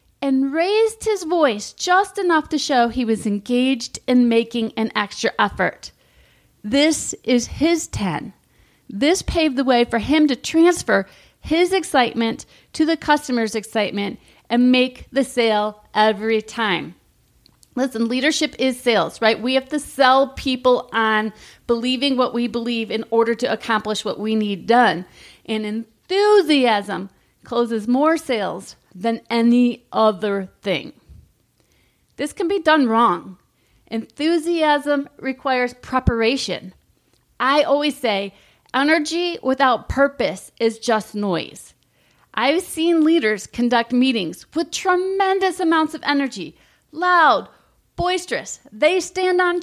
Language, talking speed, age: English, 125 wpm, 30-49